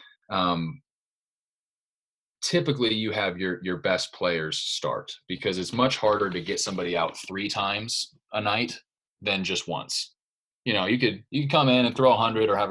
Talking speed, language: 180 wpm, English